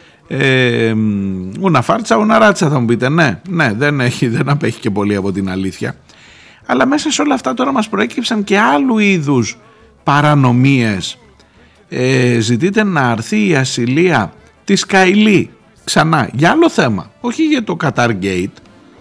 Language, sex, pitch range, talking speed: Greek, male, 105-170 Hz, 145 wpm